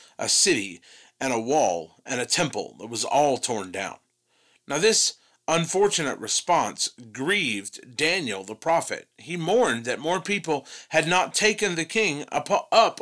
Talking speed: 150 wpm